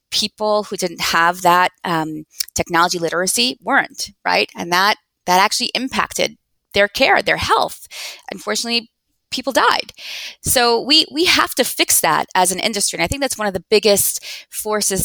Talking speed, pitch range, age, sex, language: 165 wpm, 180-230 Hz, 20-39, female, English